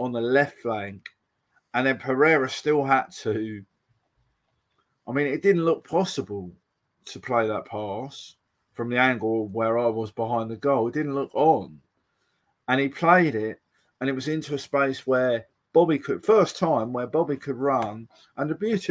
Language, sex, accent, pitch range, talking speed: English, male, British, 110-135 Hz, 175 wpm